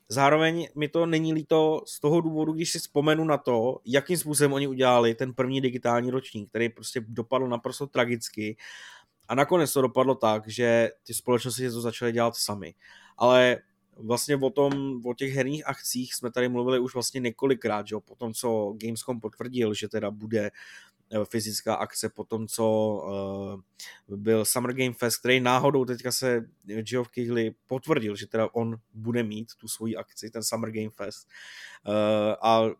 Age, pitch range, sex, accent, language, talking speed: 20-39, 110-130 Hz, male, native, Czech, 165 wpm